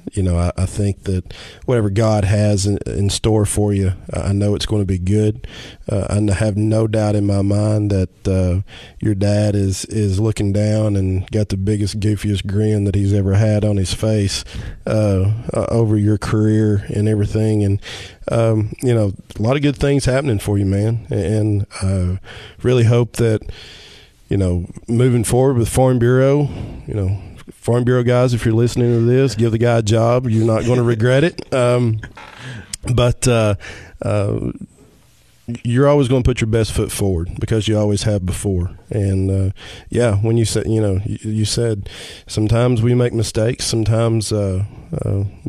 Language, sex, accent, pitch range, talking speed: English, male, American, 100-115 Hz, 180 wpm